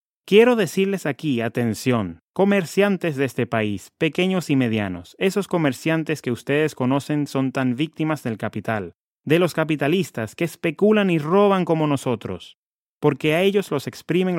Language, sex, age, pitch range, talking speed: English, male, 30-49, 120-160 Hz, 145 wpm